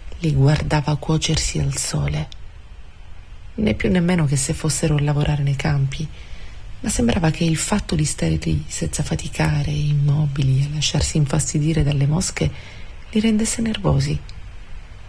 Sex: female